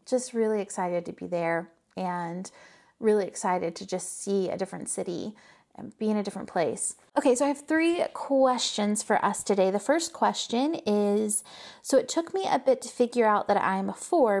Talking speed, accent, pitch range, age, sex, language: 200 wpm, American, 205-275 Hz, 30-49, female, English